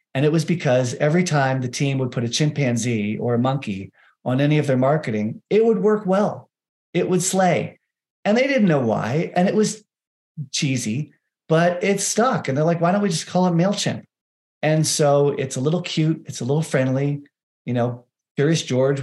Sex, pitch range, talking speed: male, 120-165 Hz, 200 wpm